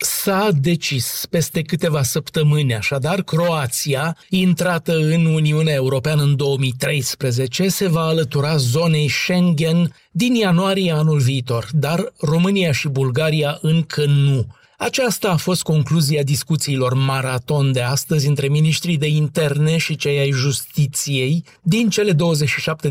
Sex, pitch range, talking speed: male, 135-185 Hz, 125 wpm